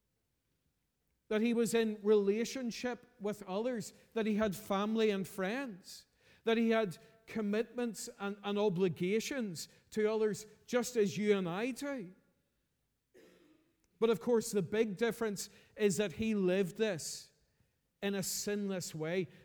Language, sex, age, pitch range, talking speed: English, male, 40-59, 180-220 Hz, 135 wpm